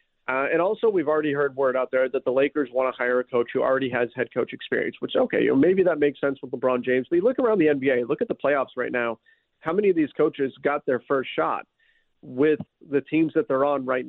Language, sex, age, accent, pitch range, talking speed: English, male, 40-59, American, 130-165 Hz, 265 wpm